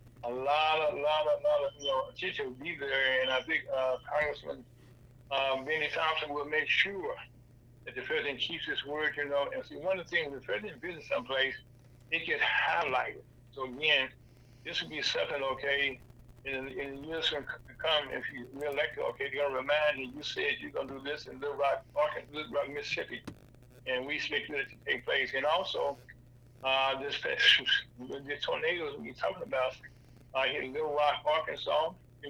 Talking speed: 205 wpm